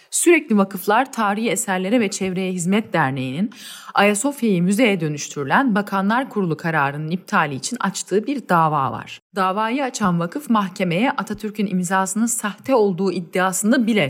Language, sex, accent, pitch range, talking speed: Turkish, female, native, 180-235 Hz, 130 wpm